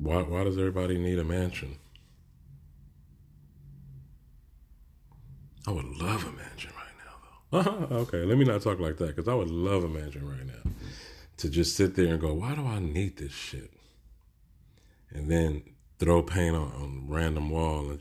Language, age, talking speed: English, 30-49, 170 wpm